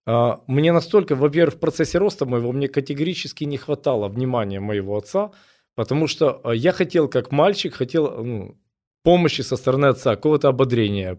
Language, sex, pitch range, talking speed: Russian, male, 125-170 Hz, 150 wpm